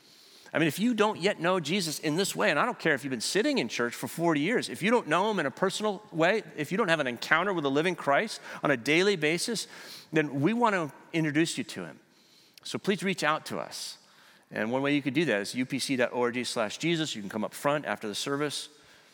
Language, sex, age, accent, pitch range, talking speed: English, male, 40-59, American, 125-165 Hz, 250 wpm